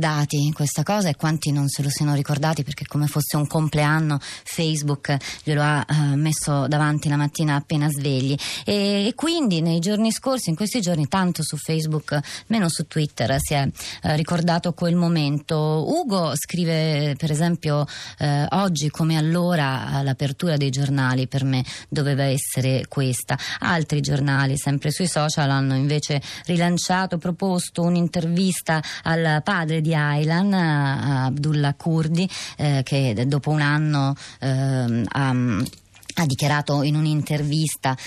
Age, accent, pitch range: 20-39, native, 140-165 Hz